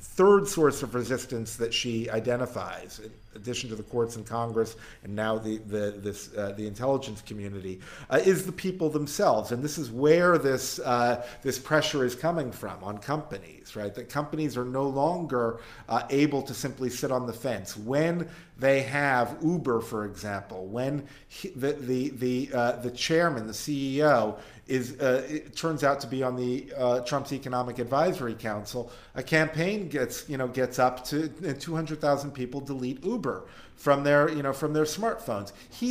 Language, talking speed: English, 175 wpm